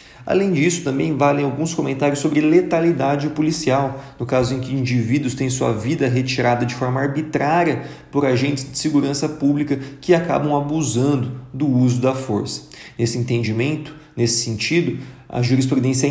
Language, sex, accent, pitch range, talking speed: Portuguese, male, Brazilian, 120-150 Hz, 145 wpm